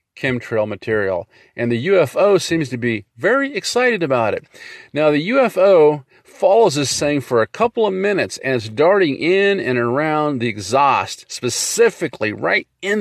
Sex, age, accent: male, 40-59, American